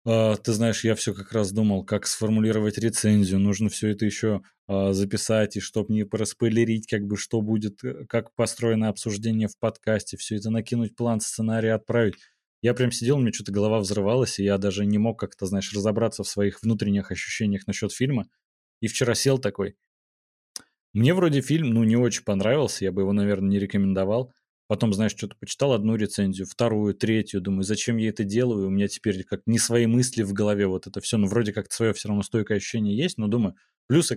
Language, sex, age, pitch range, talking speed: Russian, male, 20-39, 100-115 Hz, 195 wpm